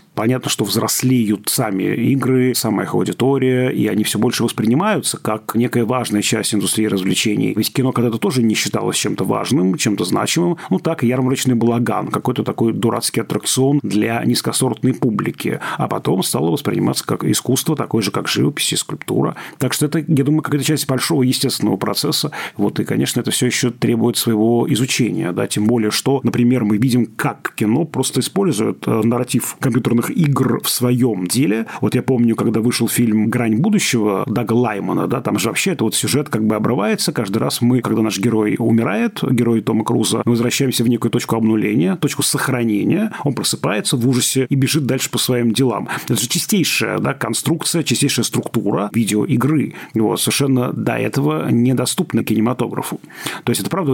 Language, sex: Russian, male